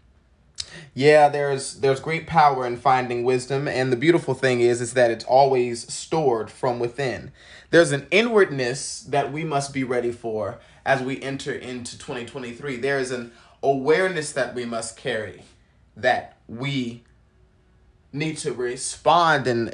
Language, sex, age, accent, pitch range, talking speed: English, male, 30-49, American, 120-145 Hz, 145 wpm